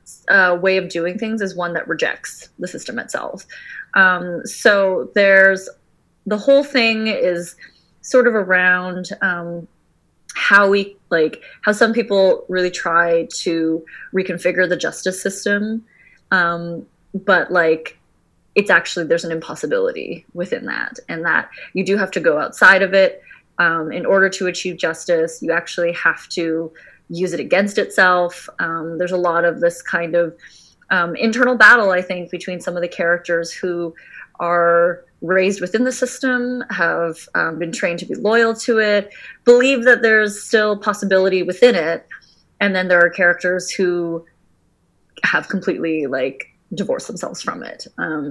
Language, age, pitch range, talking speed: English, 20-39, 170-210 Hz, 155 wpm